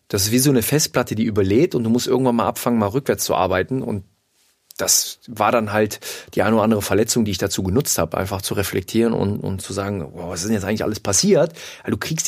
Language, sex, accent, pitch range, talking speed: German, male, German, 100-125 Hz, 240 wpm